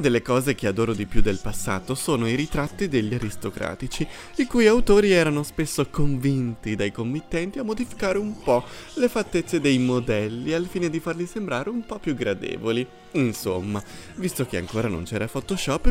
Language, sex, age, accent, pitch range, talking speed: Italian, male, 30-49, native, 115-165 Hz, 170 wpm